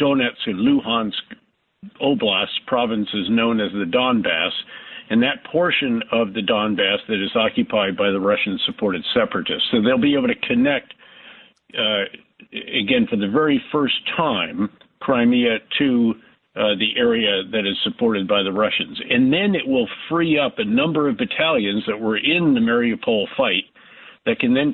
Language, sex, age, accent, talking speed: English, male, 50-69, American, 160 wpm